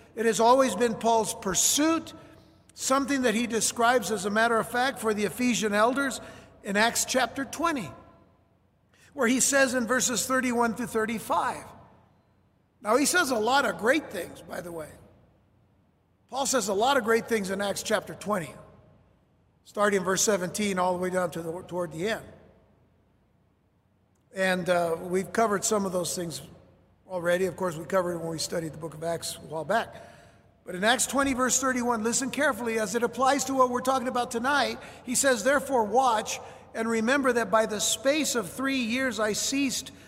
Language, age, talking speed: English, 50-69, 185 wpm